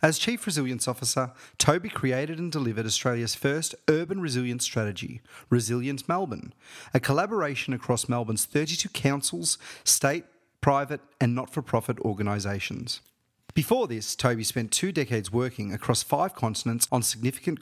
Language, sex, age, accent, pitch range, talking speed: English, male, 30-49, Australian, 115-140 Hz, 130 wpm